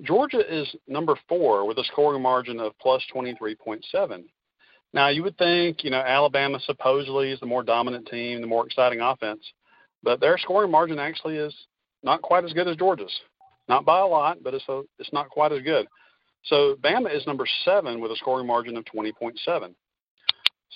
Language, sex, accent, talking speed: English, male, American, 180 wpm